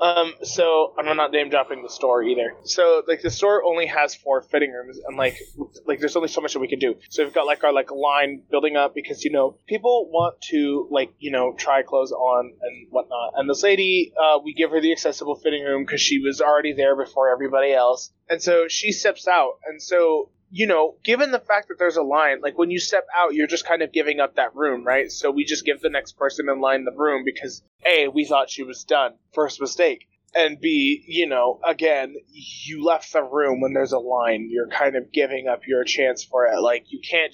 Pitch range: 135-170 Hz